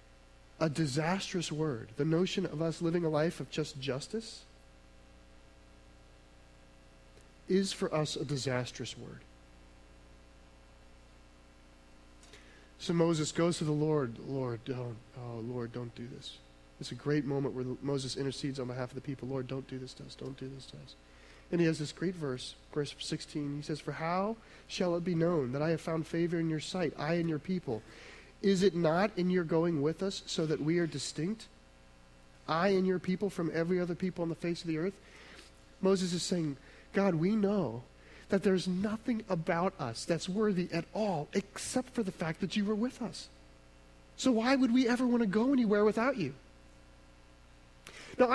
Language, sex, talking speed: English, male, 180 wpm